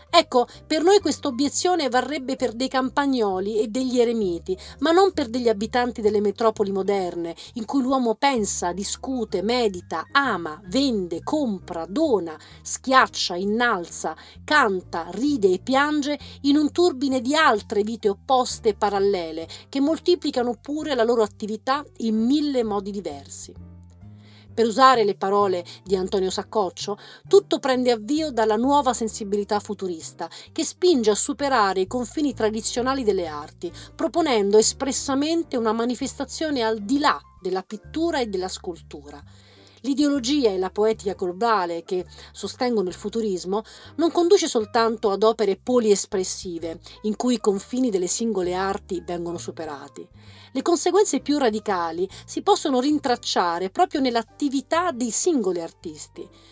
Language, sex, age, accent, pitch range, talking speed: Italian, female, 40-59, native, 195-275 Hz, 135 wpm